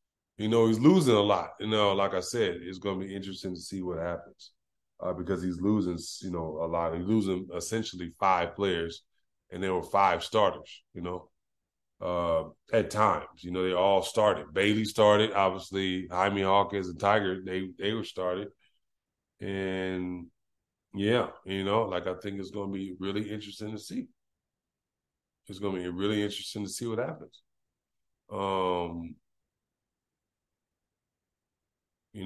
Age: 20-39